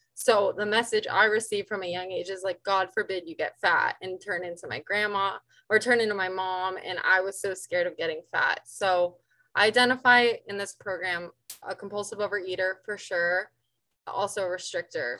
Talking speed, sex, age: 190 wpm, female, 20-39